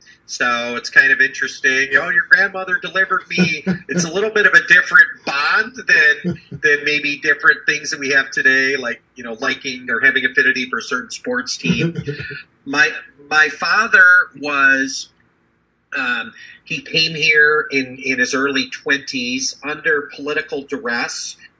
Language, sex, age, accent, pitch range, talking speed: English, male, 40-59, American, 130-175 Hz, 160 wpm